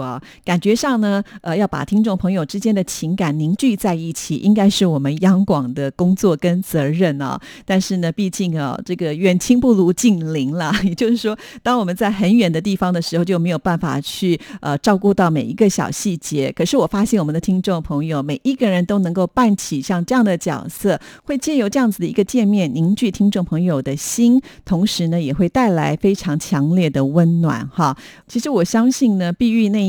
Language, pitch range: Korean, 155-200 Hz